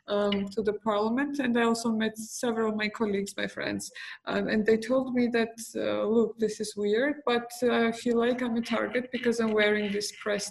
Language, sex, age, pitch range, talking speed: English, female, 20-39, 200-230 Hz, 215 wpm